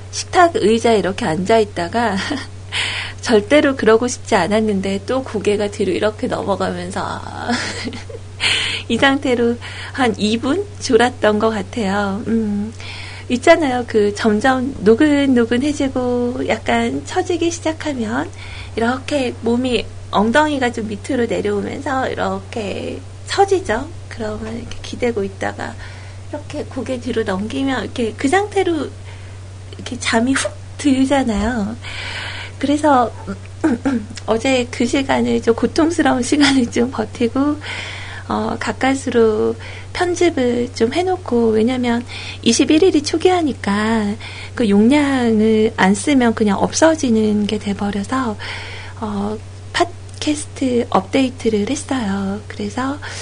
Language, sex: Korean, female